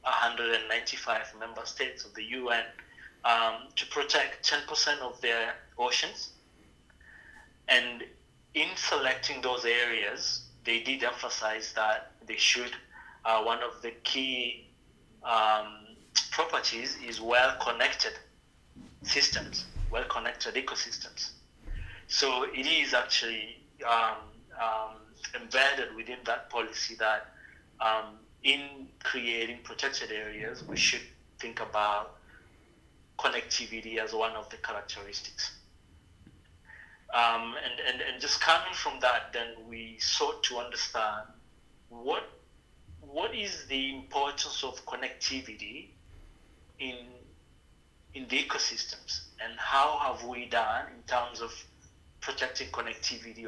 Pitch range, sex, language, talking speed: 90-115 Hz, male, English, 110 wpm